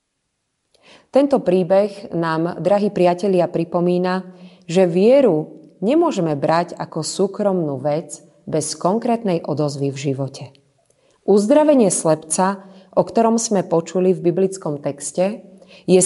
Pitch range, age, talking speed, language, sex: 155-220 Hz, 30-49, 105 wpm, Slovak, female